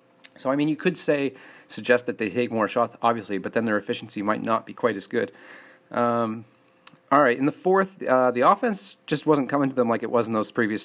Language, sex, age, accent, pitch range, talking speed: English, male, 30-49, American, 125-155 Hz, 240 wpm